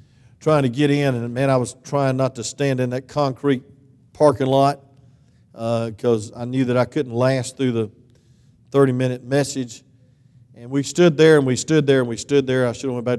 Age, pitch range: 50-69, 125-155 Hz